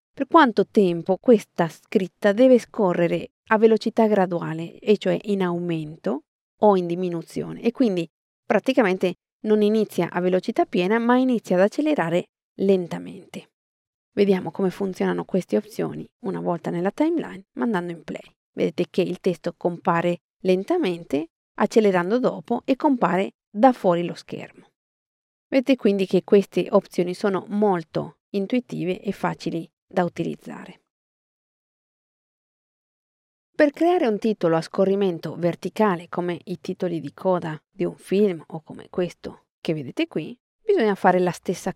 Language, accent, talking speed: Italian, native, 135 wpm